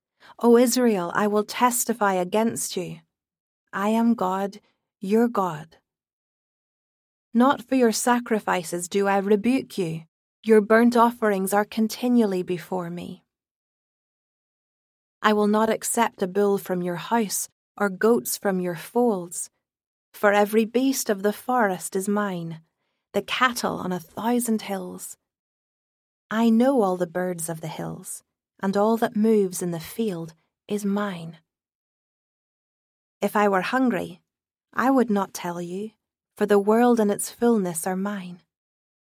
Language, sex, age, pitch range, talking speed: English, female, 30-49, 185-230 Hz, 135 wpm